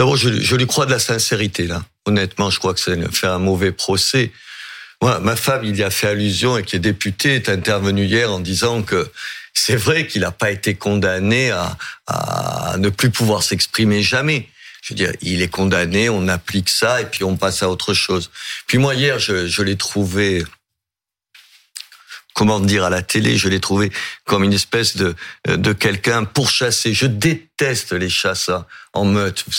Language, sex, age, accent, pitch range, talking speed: French, male, 50-69, French, 95-115 Hz, 195 wpm